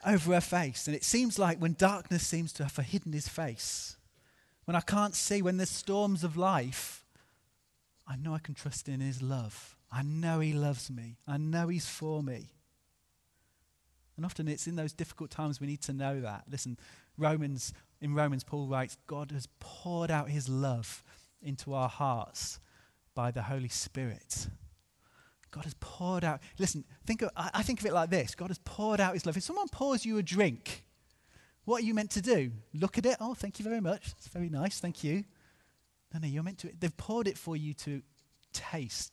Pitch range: 130-180 Hz